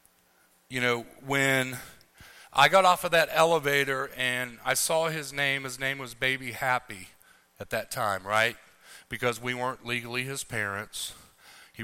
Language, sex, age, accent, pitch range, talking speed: English, male, 40-59, American, 120-145 Hz, 150 wpm